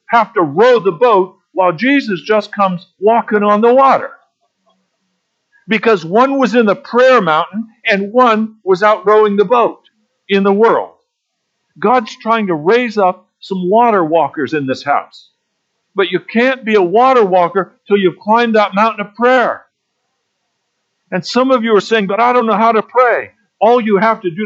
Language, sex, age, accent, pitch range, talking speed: English, male, 50-69, American, 185-235 Hz, 180 wpm